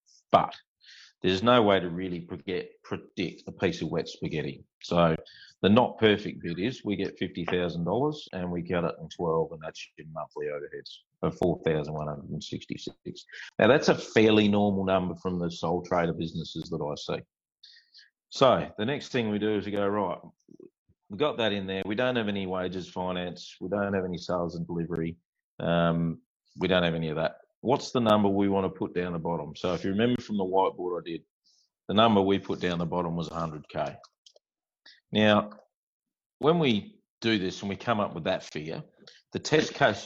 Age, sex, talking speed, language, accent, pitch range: 40-59, male, 190 wpm, English, Australian, 85-105 Hz